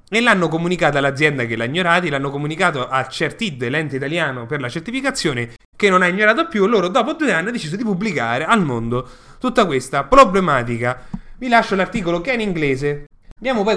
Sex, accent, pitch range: male, native, 135-195 Hz